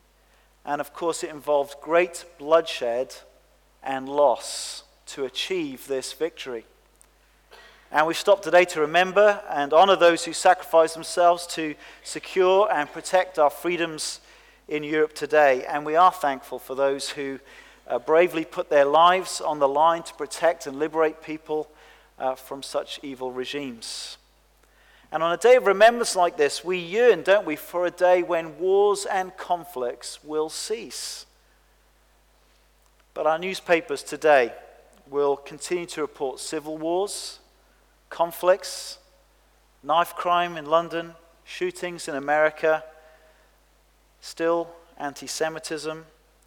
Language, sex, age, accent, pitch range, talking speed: English, male, 40-59, British, 150-180 Hz, 130 wpm